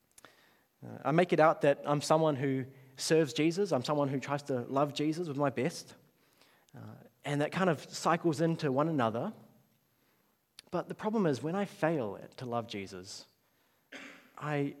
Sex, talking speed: male, 165 wpm